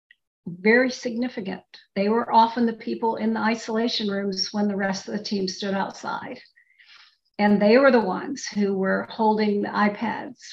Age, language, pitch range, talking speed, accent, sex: 50-69, English, 195-230 Hz, 165 wpm, American, female